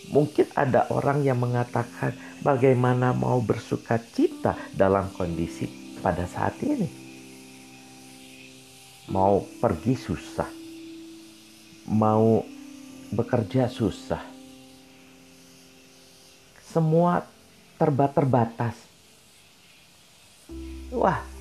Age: 50-69